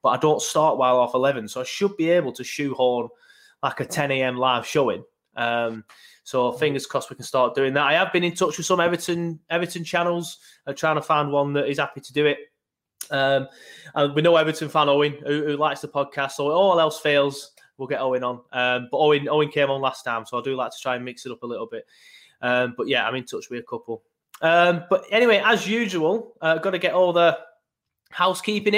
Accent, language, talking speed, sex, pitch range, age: British, English, 240 wpm, male, 135-175 Hz, 20-39